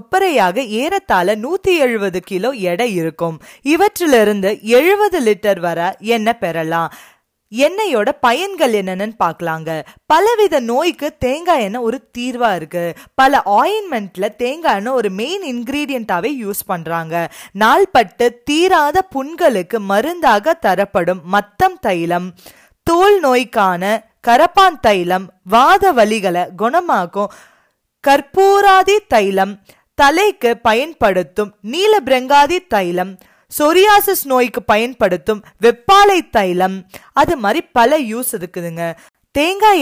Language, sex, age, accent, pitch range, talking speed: Tamil, female, 20-39, native, 195-315 Hz, 55 wpm